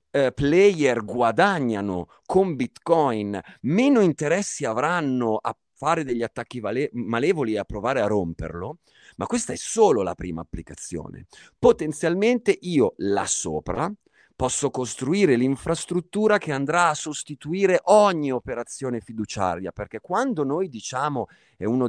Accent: native